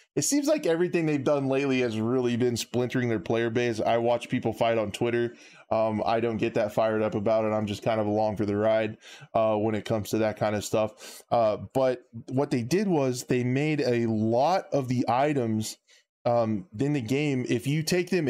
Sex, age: male, 20-39